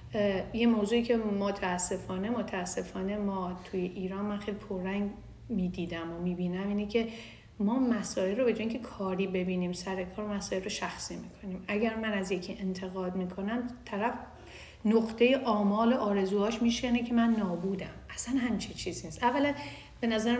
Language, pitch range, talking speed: Persian, 190-230 Hz, 145 wpm